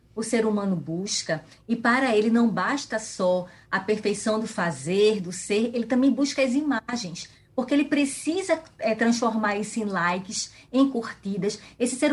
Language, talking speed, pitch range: Portuguese, 160 wpm, 205-275 Hz